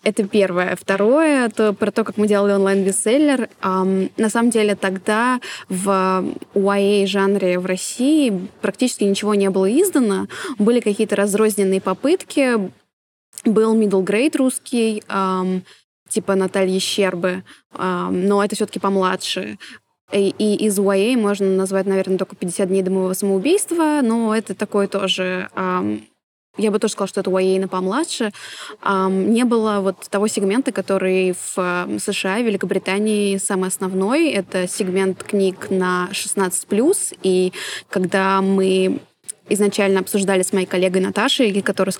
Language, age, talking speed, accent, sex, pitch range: Russian, 20-39, 135 wpm, native, female, 190-215 Hz